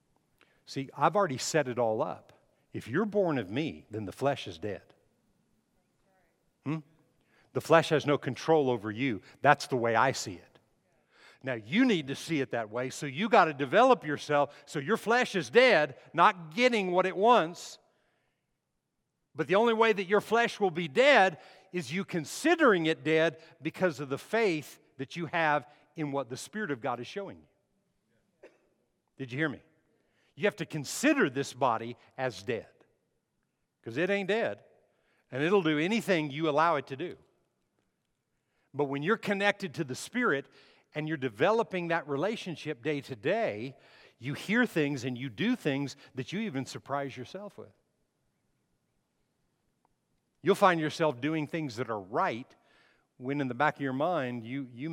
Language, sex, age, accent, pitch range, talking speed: English, male, 50-69, American, 135-190 Hz, 170 wpm